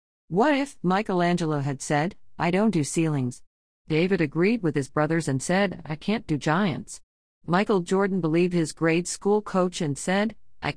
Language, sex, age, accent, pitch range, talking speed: English, female, 50-69, American, 140-185 Hz, 165 wpm